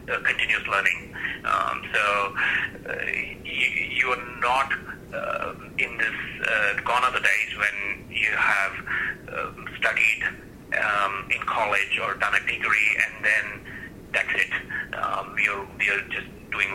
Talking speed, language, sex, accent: 140 wpm, English, male, Indian